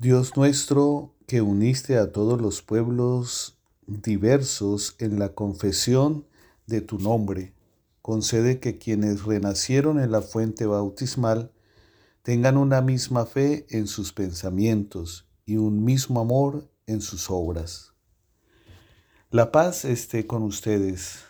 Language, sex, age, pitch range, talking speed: English, male, 50-69, 100-125 Hz, 120 wpm